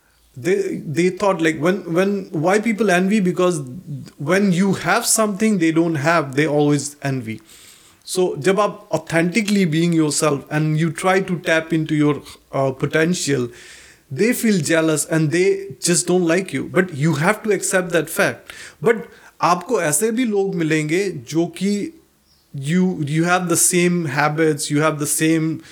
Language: Hindi